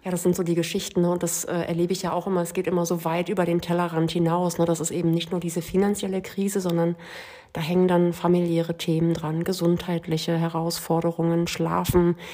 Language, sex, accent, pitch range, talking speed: German, female, German, 170-190 Hz, 200 wpm